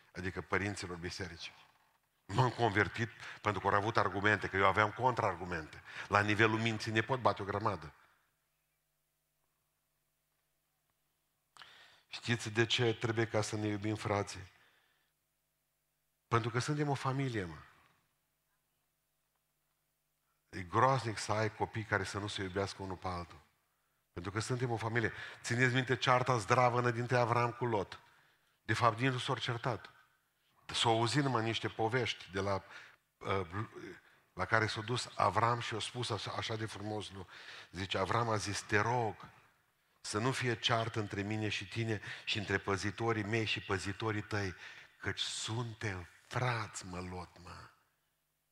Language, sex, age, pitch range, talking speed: Romanian, male, 50-69, 100-120 Hz, 140 wpm